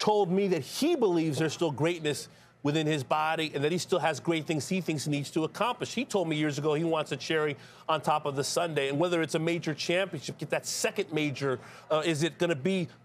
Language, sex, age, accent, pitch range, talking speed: English, male, 40-59, American, 155-195 Hz, 245 wpm